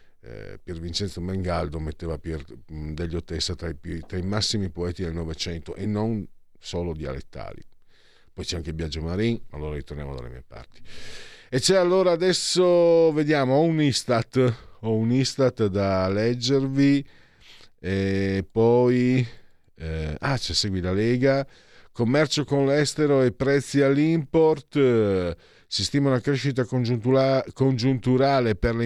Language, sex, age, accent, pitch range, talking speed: Italian, male, 50-69, native, 90-135 Hz, 135 wpm